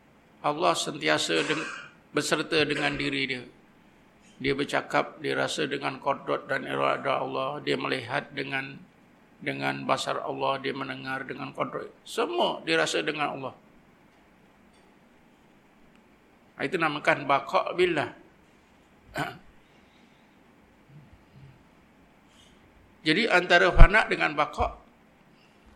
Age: 50-69